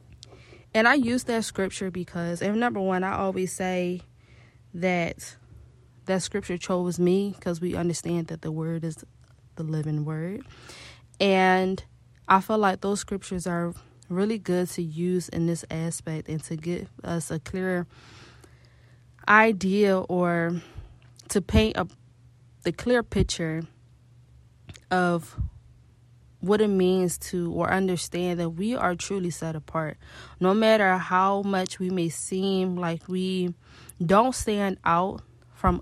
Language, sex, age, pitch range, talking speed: English, female, 20-39, 150-190 Hz, 135 wpm